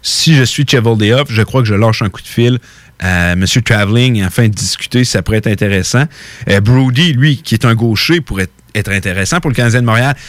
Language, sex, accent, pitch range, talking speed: French, male, Canadian, 115-145 Hz, 240 wpm